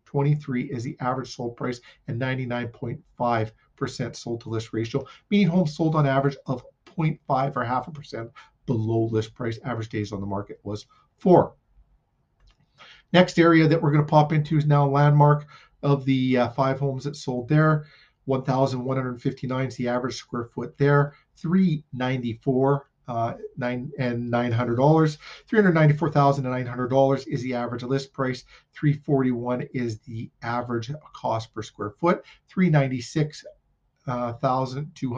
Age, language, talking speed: 40-59, English, 135 wpm